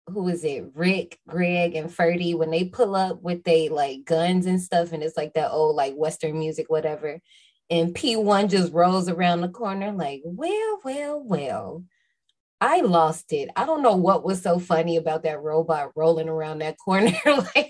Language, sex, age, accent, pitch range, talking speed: English, female, 20-39, American, 160-220 Hz, 185 wpm